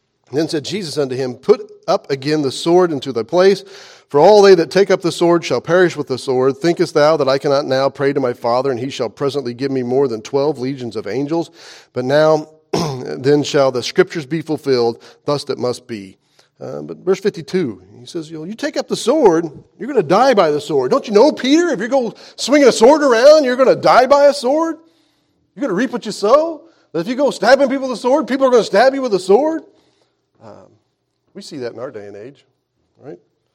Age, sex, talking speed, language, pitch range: 40-59, male, 240 wpm, English, 135-210 Hz